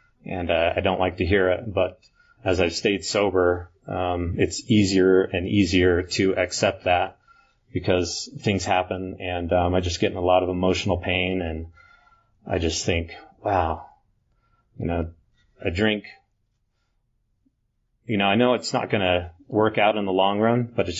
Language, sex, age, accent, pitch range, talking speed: English, male, 30-49, American, 90-105 Hz, 170 wpm